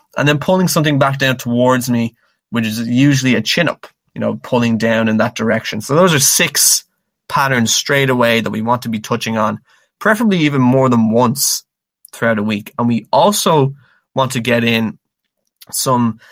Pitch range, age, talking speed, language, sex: 115-135 Hz, 20-39, 190 wpm, English, male